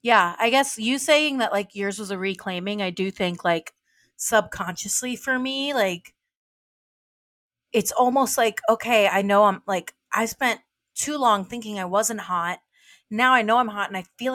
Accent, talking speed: American, 180 wpm